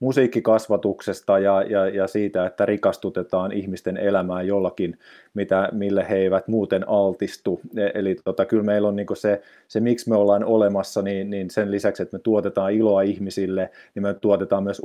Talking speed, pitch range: 155 wpm, 95-105 Hz